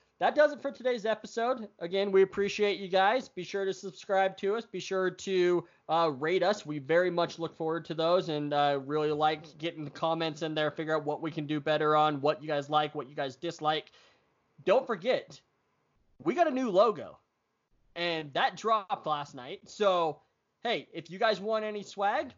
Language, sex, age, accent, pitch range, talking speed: English, male, 20-39, American, 150-195 Hz, 205 wpm